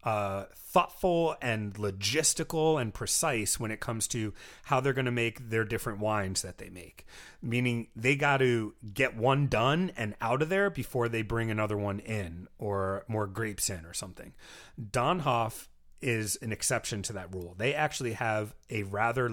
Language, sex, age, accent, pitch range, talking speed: English, male, 30-49, American, 105-130 Hz, 175 wpm